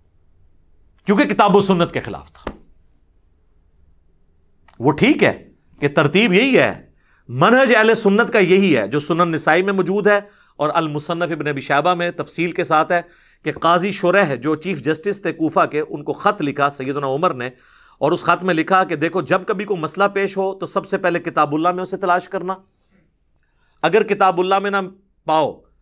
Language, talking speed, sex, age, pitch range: Urdu, 185 wpm, male, 50-69, 125-195 Hz